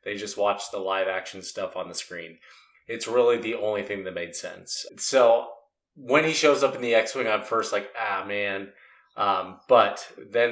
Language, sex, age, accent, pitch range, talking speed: English, male, 30-49, American, 95-115 Hz, 200 wpm